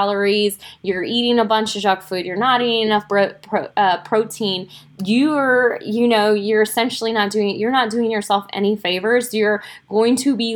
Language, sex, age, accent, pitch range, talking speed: English, female, 10-29, American, 190-220 Hz, 180 wpm